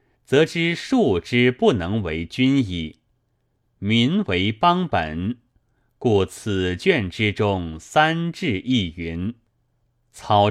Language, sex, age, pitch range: Chinese, male, 30-49, 95-130 Hz